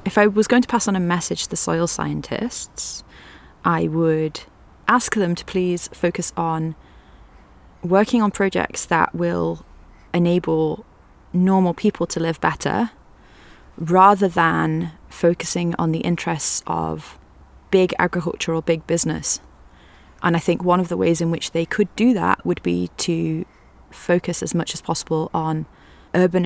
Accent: British